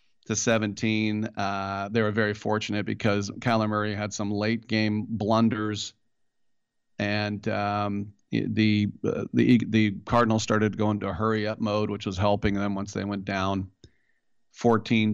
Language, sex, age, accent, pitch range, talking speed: English, male, 40-59, American, 100-110 Hz, 145 wpm